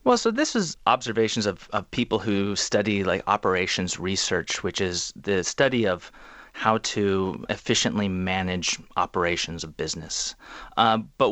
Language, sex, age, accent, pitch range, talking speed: English, male, 30-49, American, 95-120 Hz, 145 wpm